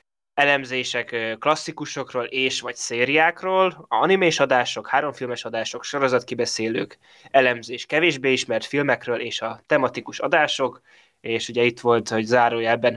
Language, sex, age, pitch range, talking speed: Hungarian, male, 20-39, 115-130 Hz, 120 wpm